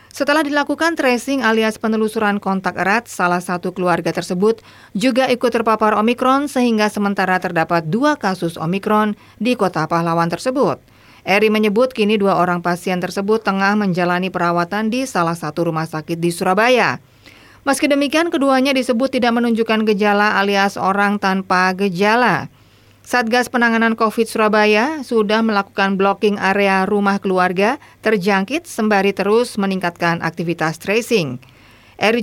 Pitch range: 185-230 Hz